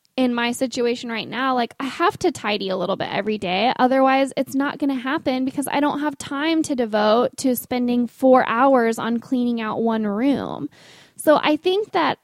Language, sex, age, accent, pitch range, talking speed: English, female, 20-39, American, 210-250 Hz, 200 wpm